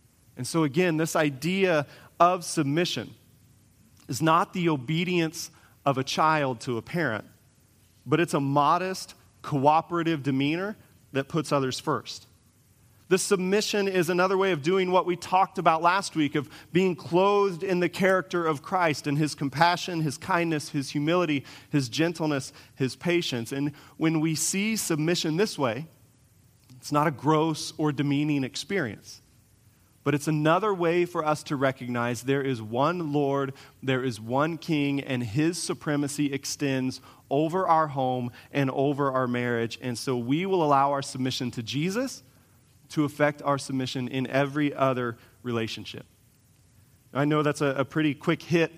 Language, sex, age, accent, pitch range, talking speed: English, male, 30-49, American, 125-160 Hz, 155 wpm